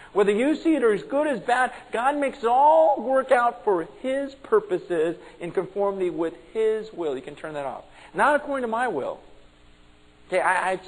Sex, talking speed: male, 205 wpm